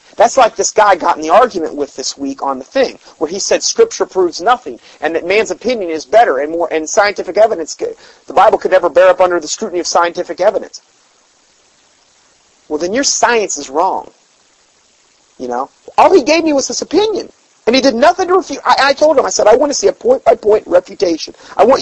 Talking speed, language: 215 wpm, English